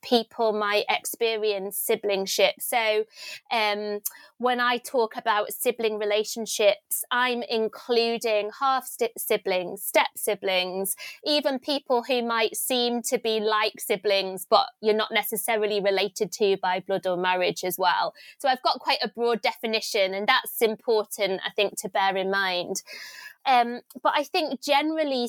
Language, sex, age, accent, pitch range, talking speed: English, female, 20-39, British, 210-255 Hz, 140 wpm